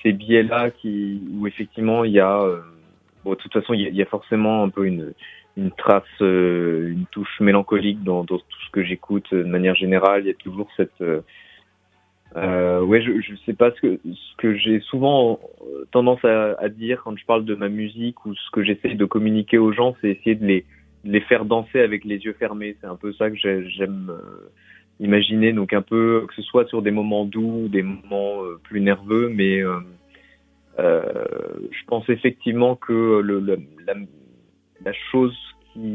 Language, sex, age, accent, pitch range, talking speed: French, male, 30-49, French, 95-115 Hz, 195 wpm